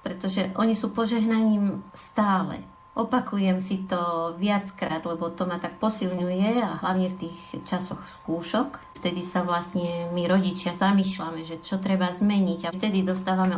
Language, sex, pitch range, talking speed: Slovak, female, 175-200 Hz, 145 wpm